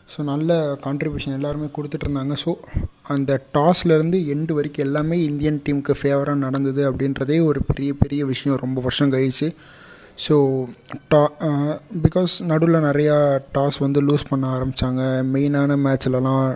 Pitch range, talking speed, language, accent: 140-155 Hz, 125 wpm, Tamil, native